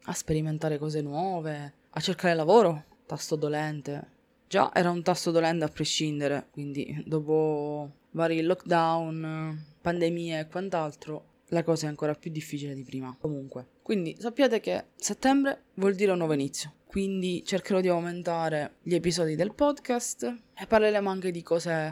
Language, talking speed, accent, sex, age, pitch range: Italian, 150 wpm, native, female, 20-39, 155-195 Hz